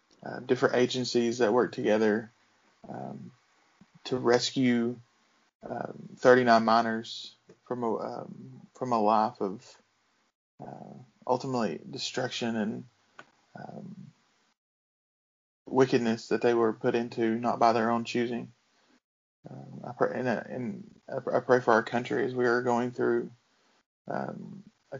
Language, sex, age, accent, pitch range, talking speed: English, male, 20-39, American, 115-125 Hz, 130 wpm